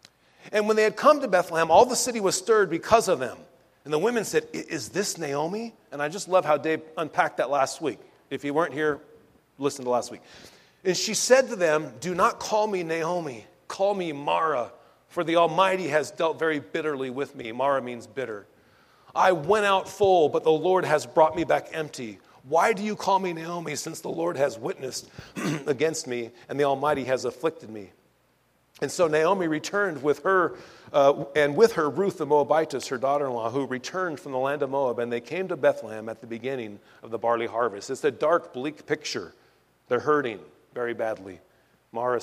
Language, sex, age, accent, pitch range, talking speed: English, male, 40-59, American, 140-190 Hz, 200 wpm